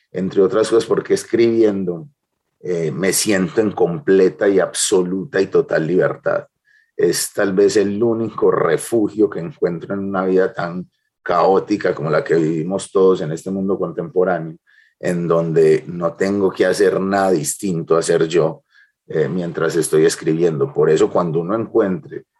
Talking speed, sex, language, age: 155 wpm, male, Spanish, 30-49